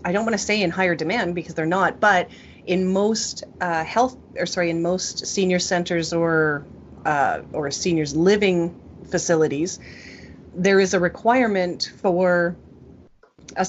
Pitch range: 165-195 Hz